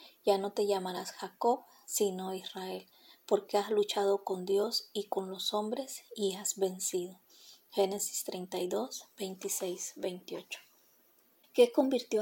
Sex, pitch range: female, 195-225 Hz